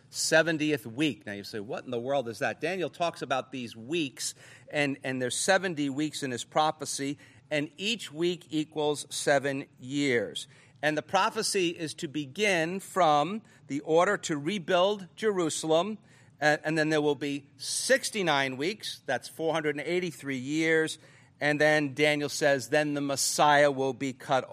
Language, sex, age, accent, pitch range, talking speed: English, male, 50-69, American, 145-170 Hz, 155 wpm